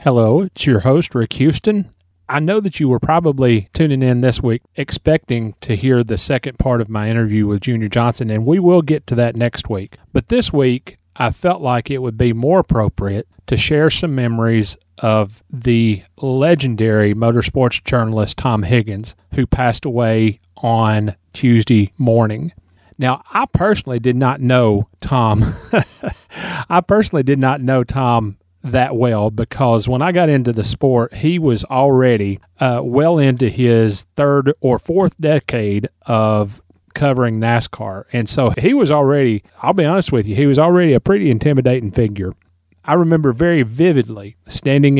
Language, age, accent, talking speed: English, 30-49, American, 165 wpm